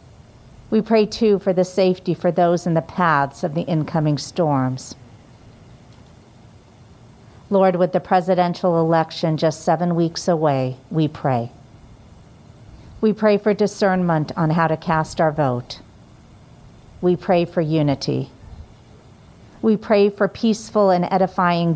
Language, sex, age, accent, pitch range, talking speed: English, female, 50-69, American, 135-180 Hz, 125 wpm